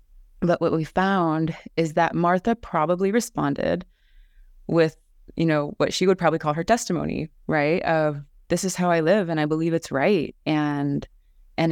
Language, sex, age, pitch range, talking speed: English, female, 20-39, 135-160 Hz, 170 wpm